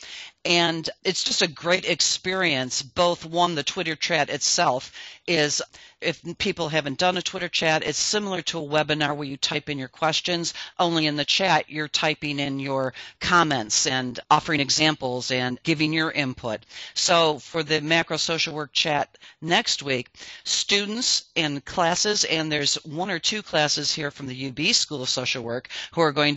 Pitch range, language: 145-175 Hz, English